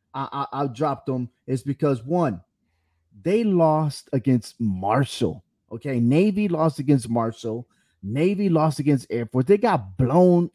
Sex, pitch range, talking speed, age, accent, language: male, 135-170 Hz, 140 wpm, 30-49, American, English